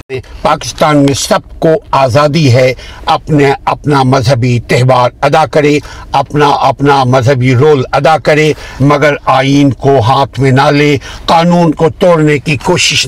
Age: 60-79